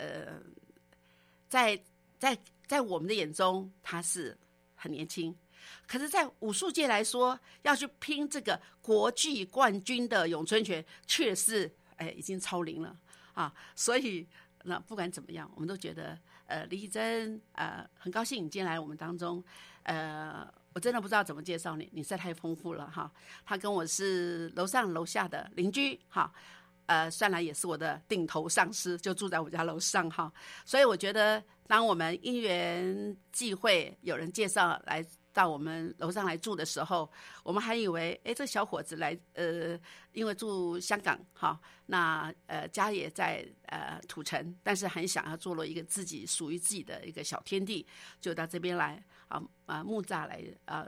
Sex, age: female, 50-69